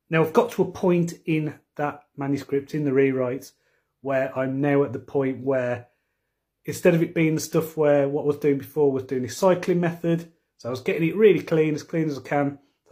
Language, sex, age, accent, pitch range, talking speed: English, male, 30-49, British, 135-155 Hz, 230 wpm